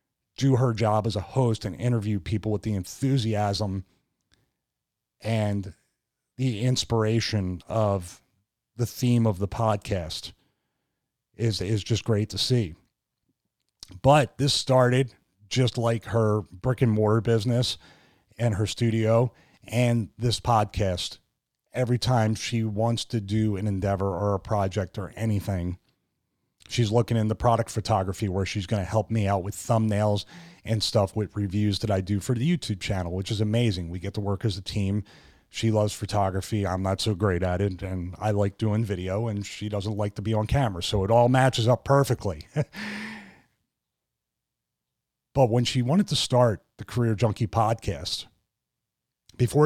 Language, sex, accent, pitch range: English, male, American, 100-120 Hz